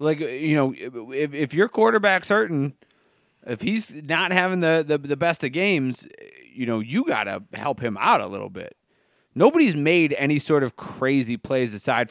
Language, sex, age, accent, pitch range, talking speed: English, male, 30-49, American, 115-165 Hz, 185 wpm